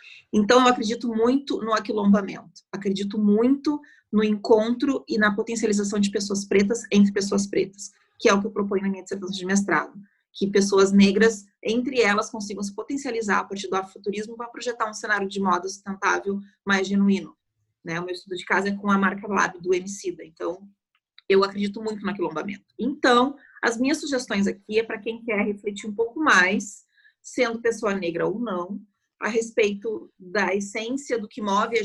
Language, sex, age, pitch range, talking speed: Portuguese, female, 30-49, 195-230 Hz, 180 wpm